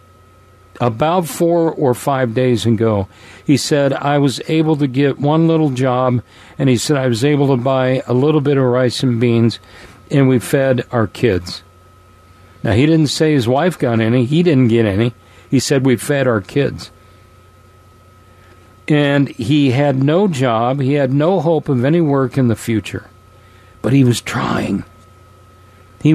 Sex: male